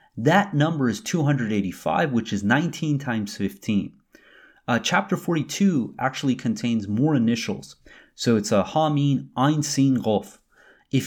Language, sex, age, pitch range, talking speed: English, male, 30-49, 110-155 Hz, 130 wpm